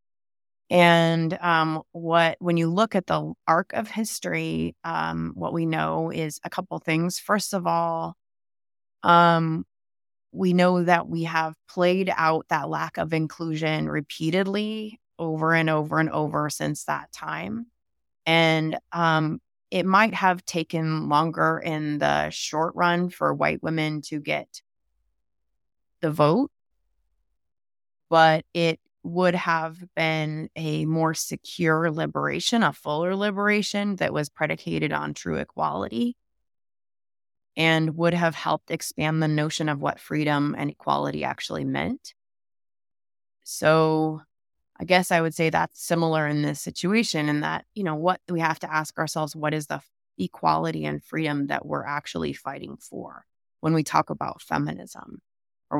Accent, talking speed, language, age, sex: American, 140 wpm, English, 20-39, female